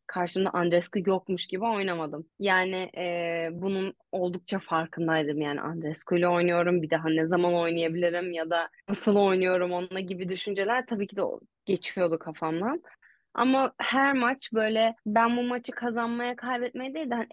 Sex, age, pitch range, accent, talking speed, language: female, 20-39, 175-240 Hz, native, 150 wpm, Turkish